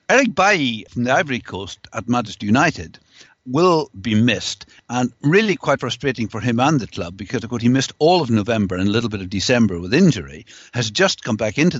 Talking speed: 215 wpm